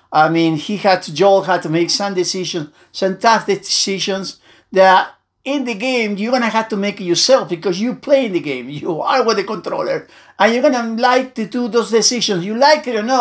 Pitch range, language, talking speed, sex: 165-220 Hz, English, 225 wpm, male